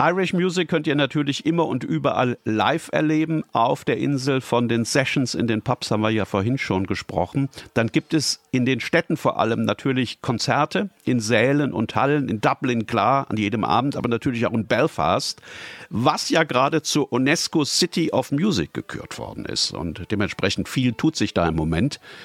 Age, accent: 50-69, German